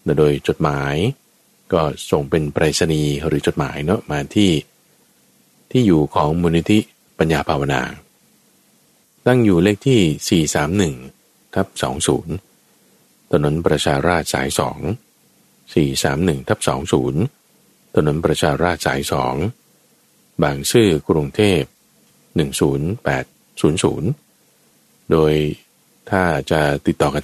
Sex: male